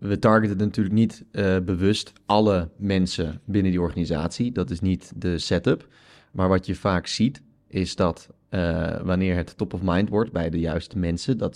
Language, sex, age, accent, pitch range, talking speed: English, male, 20-39, Dutch, 90-105 Hz, 180 wpm